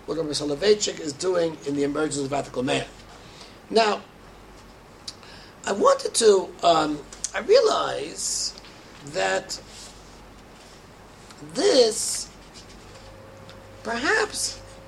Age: 60-79